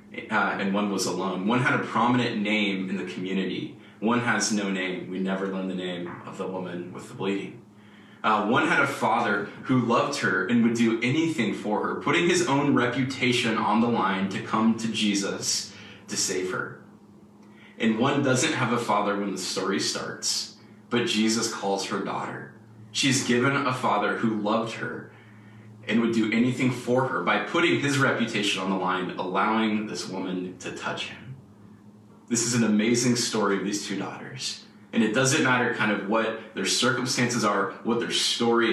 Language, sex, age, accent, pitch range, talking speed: English, male, 20-39, American, 100-120 Hz, 185 wpm